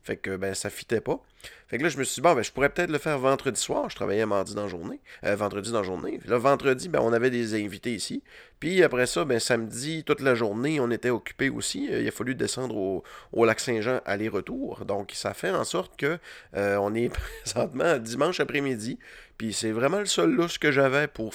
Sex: male